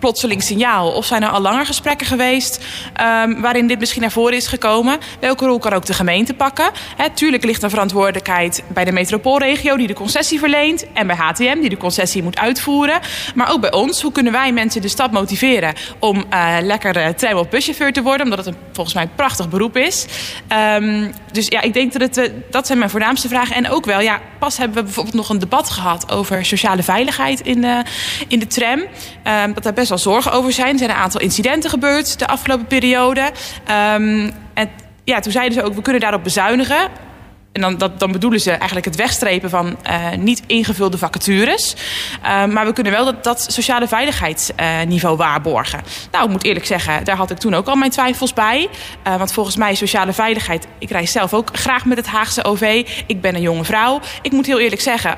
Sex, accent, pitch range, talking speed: female, Dutch, 195-255 Hz, 205 wpm